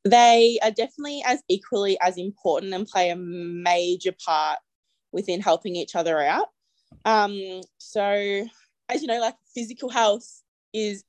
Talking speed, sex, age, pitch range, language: 140 wpm, female, 20-39, 175-215 Hz, English